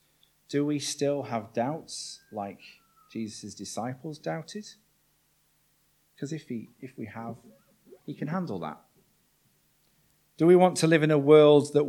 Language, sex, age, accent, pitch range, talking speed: English, male, 40-59, British, 110-140 Hz, 135 wpm